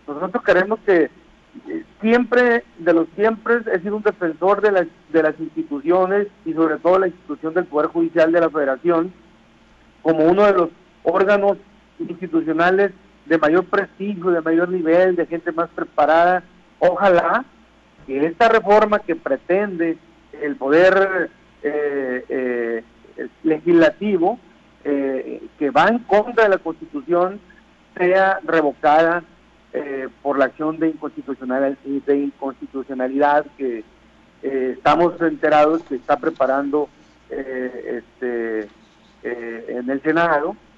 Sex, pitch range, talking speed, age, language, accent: male, 140-185 Hz, 125 wpm, 50-69, Spanish, Mexican